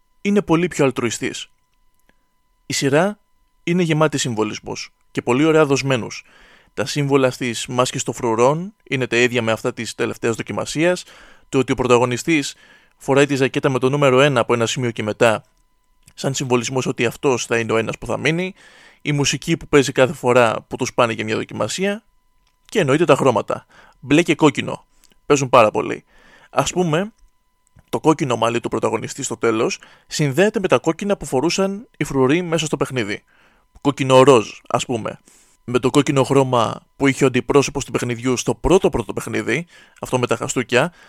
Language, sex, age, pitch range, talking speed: Greek, male, 20-39, 120-155 Hz, 170 wpm